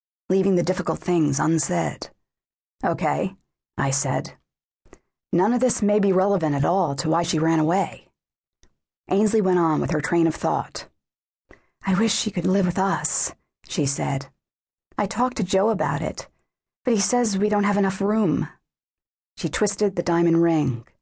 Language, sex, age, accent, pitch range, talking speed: English, female, 40-59, American, 150-195 Hz, 165 wpm